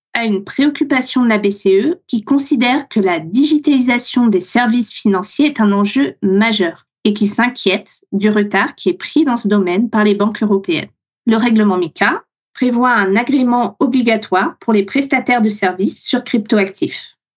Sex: female